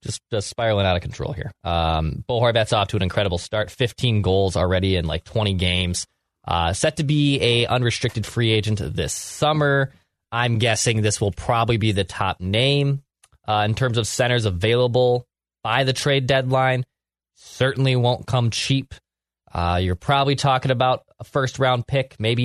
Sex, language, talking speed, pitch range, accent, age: male, English, 175 wpm, 105-135 Hz, American, 20-39